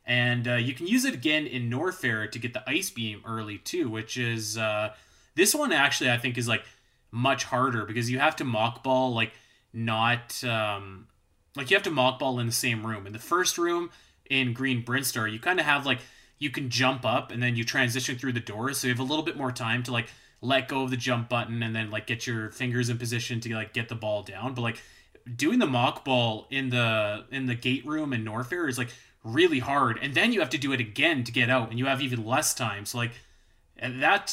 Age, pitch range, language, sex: 20-39, 115-135 Hz, English, male